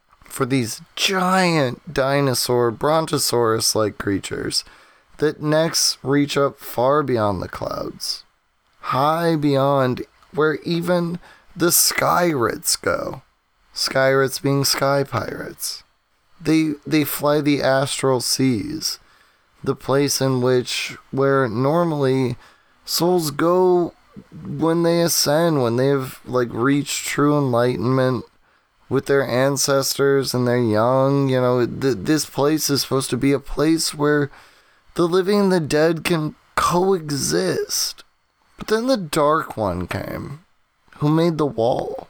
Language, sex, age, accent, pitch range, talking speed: English, male, 20-39, American, 125-155 Hz, 125 wpm